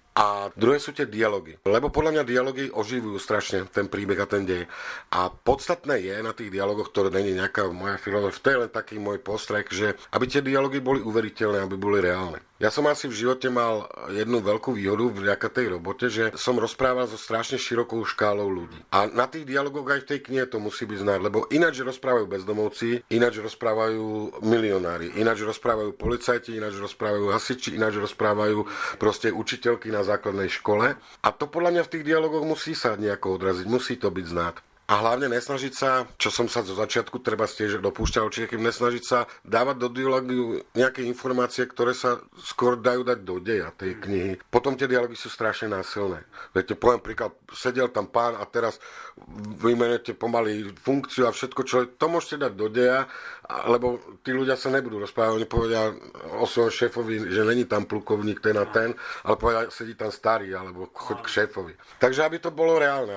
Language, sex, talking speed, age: Slovak, male, 185 wpm, 50-69